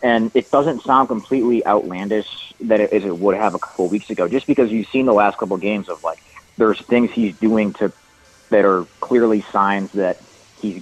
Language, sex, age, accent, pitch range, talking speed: English, male, 30-49, American, 95-115 Hz, 215 wpm